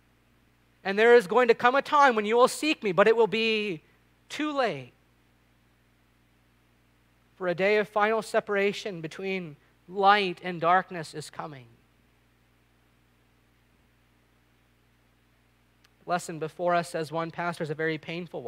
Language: English